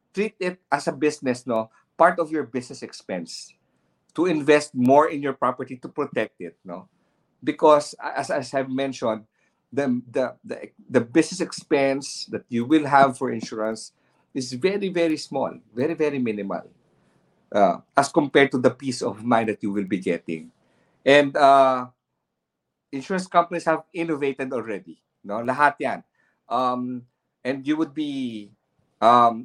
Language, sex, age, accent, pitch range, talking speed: English, male, 50-69, Filipino, 115-145 Hz, 145 wpm